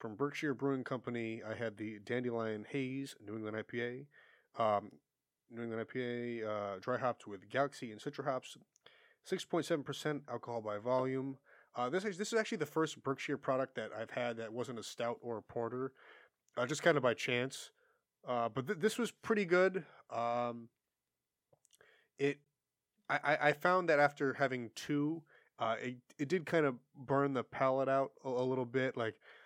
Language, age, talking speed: English, 30-49, 175 wpm